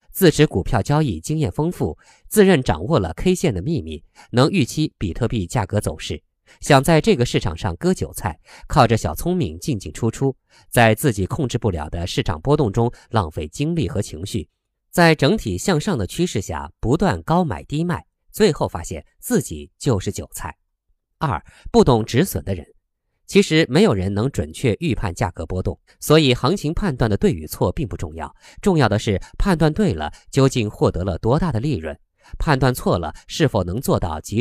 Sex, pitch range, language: male, 95-150 Hz, Chinese